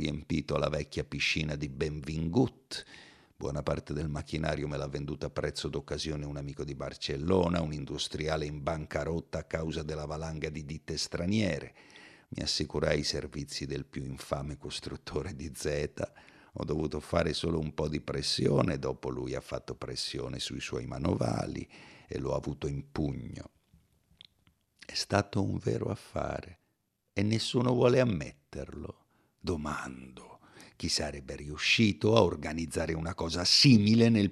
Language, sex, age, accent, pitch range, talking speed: Italian, male, 50-69, native, 75-95 Hz, 140 wpm